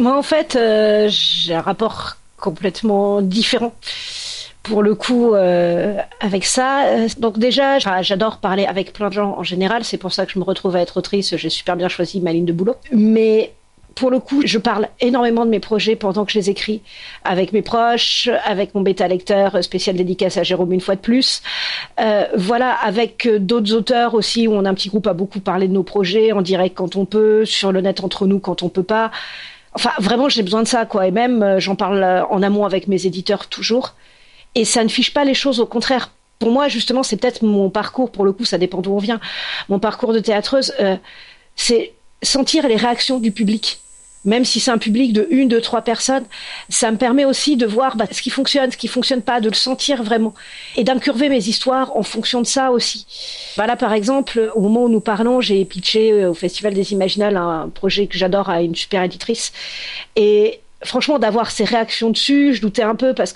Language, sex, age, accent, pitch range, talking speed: French, female, 40-59, French, 195-245 Hz, 215 wpm